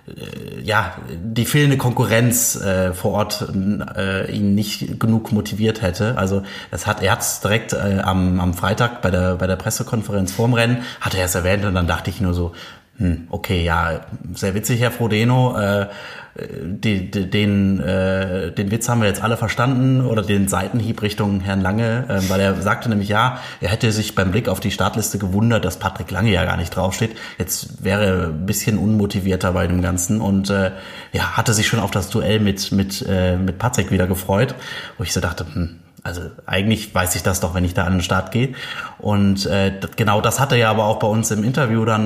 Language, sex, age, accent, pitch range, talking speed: German, male, 30-49, German, 95-115 Hz, 200 wpm